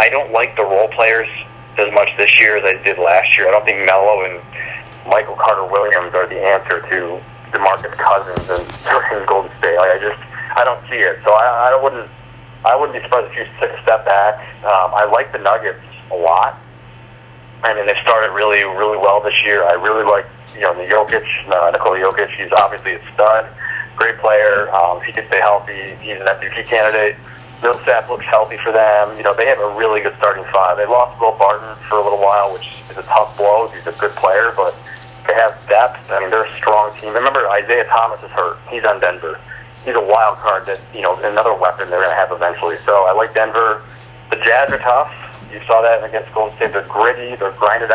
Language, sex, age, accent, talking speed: English, male, 30-49, American, 215 wpm